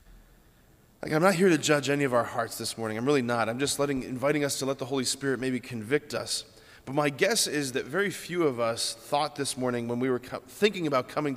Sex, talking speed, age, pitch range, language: male, 250 wpm, 20-39, 120-155 Hz, English